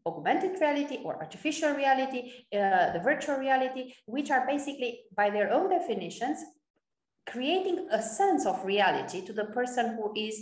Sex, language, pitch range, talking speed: female, English, 205-280 Hz, 150 wpm